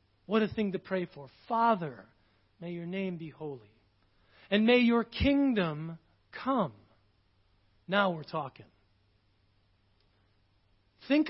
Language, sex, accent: English, male, American